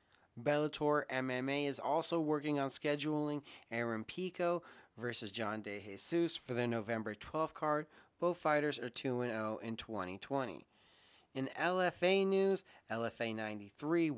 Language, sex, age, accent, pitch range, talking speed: English, male, 30-49, American, 115-150 Hz, 120 wpm